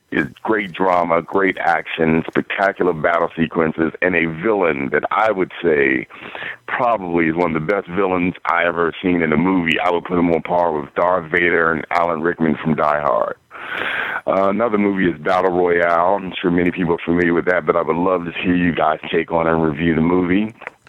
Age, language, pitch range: 50-69, English, 85-95 Hz